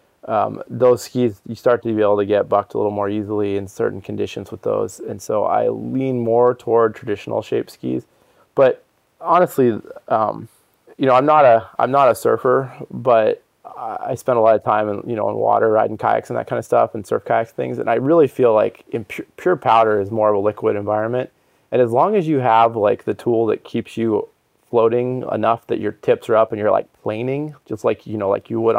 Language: English